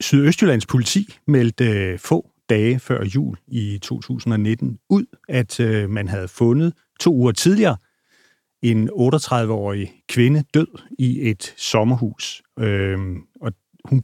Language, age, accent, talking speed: Danish, 40-59, native, 110 wpm